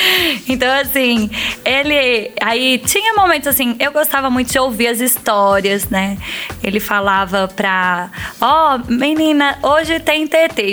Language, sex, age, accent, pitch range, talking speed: Portuguese, female, 20-39, Brazilian, 215-275 Hz, 140 wpm